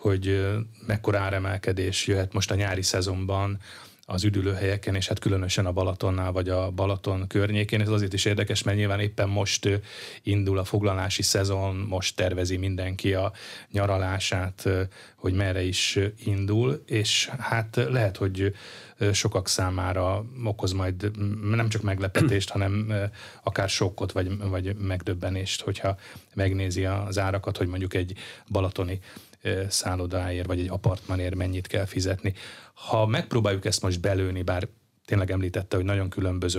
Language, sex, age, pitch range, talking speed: Hungarian, male, 30-49, 95-105 Hz, 135 wpm